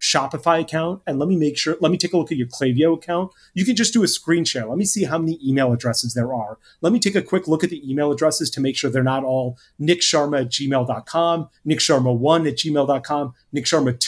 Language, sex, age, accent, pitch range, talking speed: English, male, 30-49, American, 130-175 Hz, 235 wpm